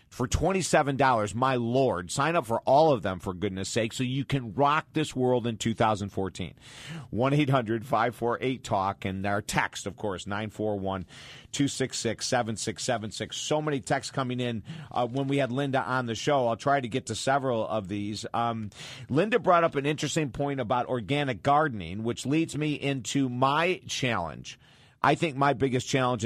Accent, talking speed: American, 160 wpm